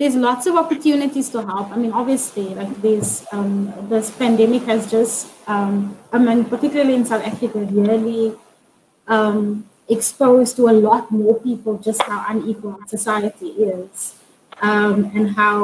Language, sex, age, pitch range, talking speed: English, female, 20-39, 210-245 Hz, 150 wpm